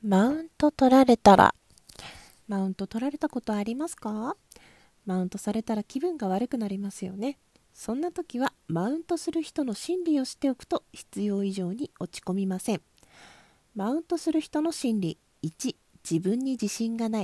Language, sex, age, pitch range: Japanese, female, 40-59, 205-275 Hz